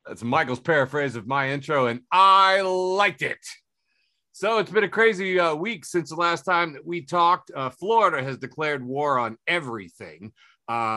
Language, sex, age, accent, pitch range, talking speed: English, male, 40-59, American, 125-175 Hz, 175 wpm